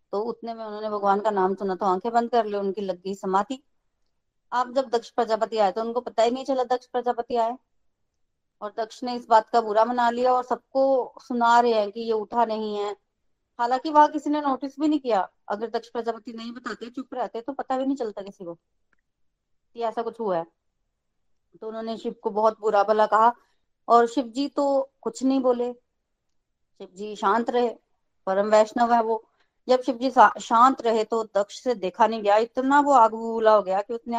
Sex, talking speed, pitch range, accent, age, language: female, 205 wpm, 210-250 Hz, native, 20-39, Hindi